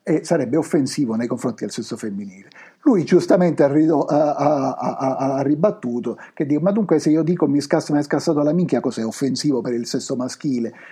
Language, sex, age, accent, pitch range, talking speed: Italian, male, 50-69, native, 120-165 Hz, 200 wpm